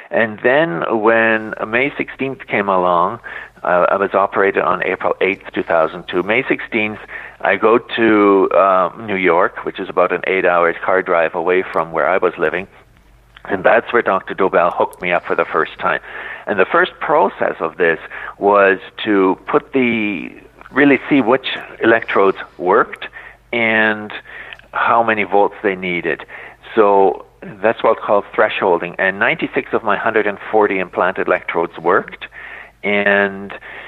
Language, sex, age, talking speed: English, male, 50-69, 145 wpm